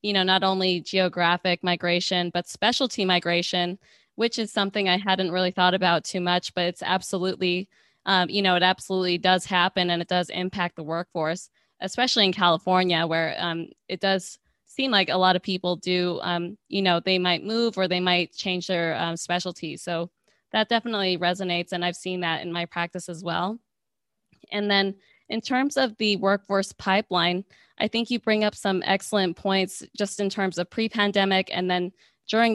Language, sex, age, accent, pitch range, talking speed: English, female, 20-39, American, 175-200 Hz, 185 wpm